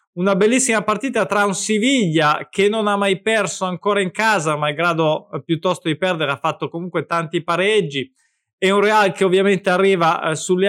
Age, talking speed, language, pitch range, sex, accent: 20-39, 190 wpm, Italian, 170-210 Hz, male, native